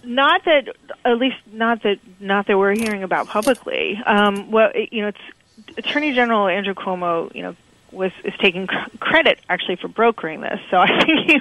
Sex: female